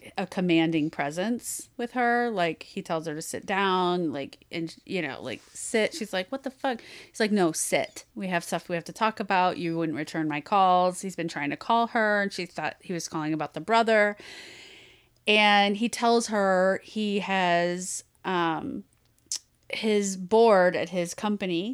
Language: English